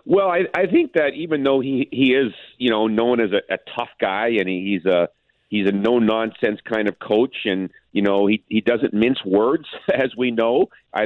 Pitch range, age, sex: 105-120 Hz, 50-69, male